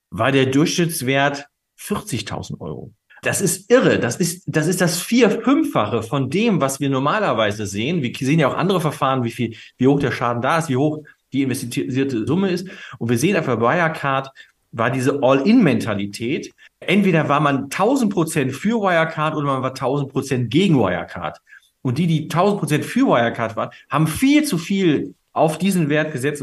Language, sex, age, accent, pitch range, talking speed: German, male, 40-59, German, 125-170 Hz, 175 wpm